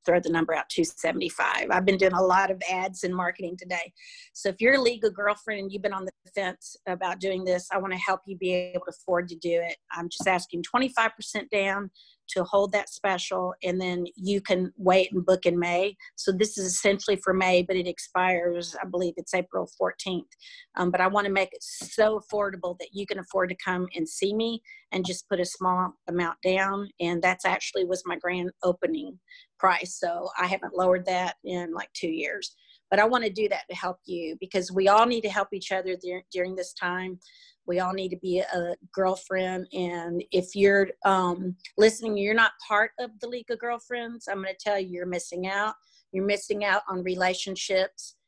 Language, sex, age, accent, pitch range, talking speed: English, female, 40-59, American, 180-205 Hz, 210 wpm